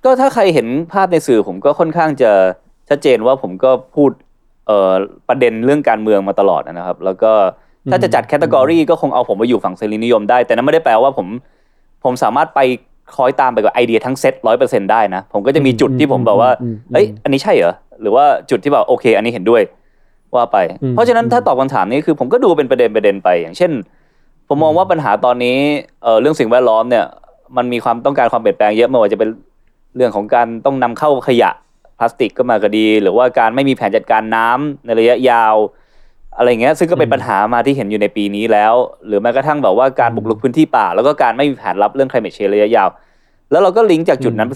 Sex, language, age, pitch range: male, Thai, 20-39, 110-150 Hz